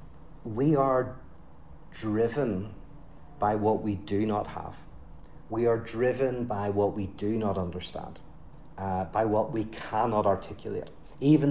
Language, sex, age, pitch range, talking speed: English, male, 40-59, 100-115 Hz, 130 wpm